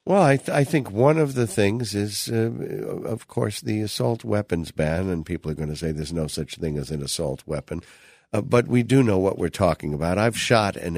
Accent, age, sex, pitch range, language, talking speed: American, 60-79, male, 85-115 Hz, English, 230 wpm